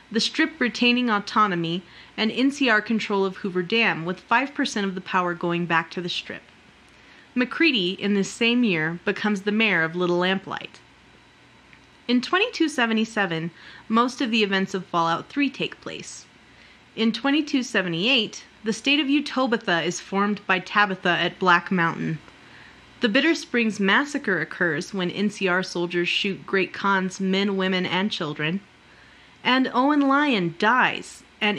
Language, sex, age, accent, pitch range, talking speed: English, female, 30-49, American, 185-245 Hz, 140 wpm